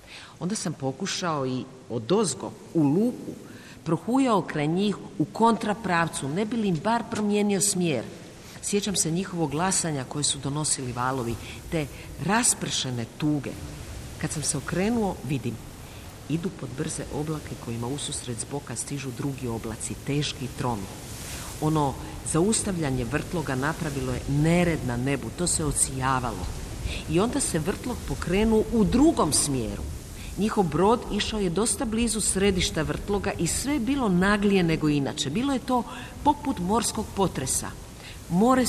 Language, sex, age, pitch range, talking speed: Croatian, female, 50-69, 135-205 Hz, 135 wpm